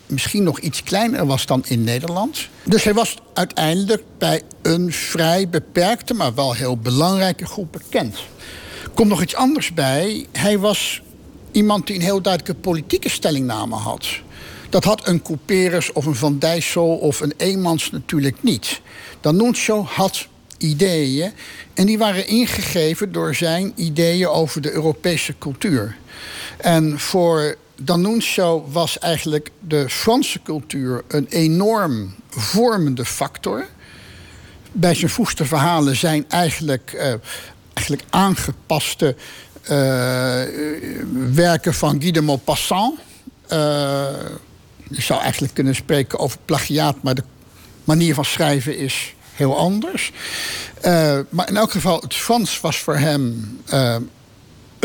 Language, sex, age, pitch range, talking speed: Dutch, male, 60-79, 140-190 Hz, 130 wpm